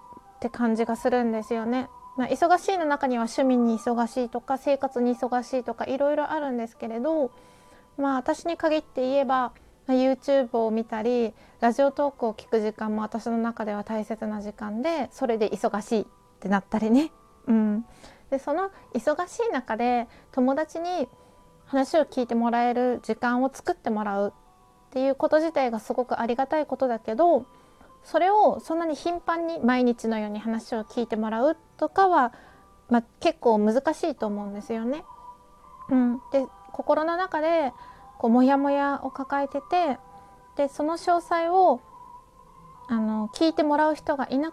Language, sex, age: Japanese, female, 20-39